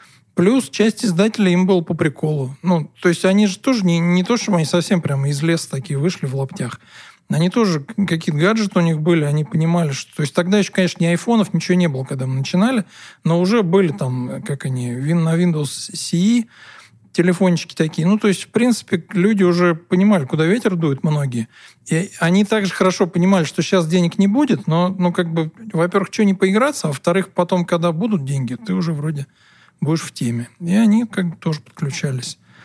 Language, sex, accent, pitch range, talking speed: Russian, male, native, 145-190 Hz, 200 wpm